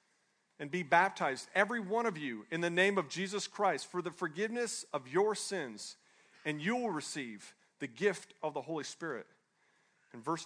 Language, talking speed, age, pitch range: English, 180 wpm, 40-59, 185-220 Hz